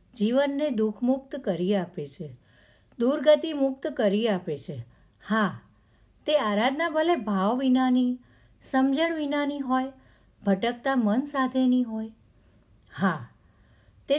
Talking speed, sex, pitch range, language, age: 95 wpm, female, 190-265 Hz, Gujarati, 50-69